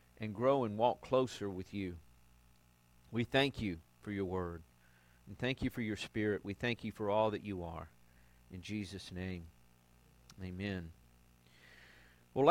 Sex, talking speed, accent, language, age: male, 155 wpm, American, English, 50-69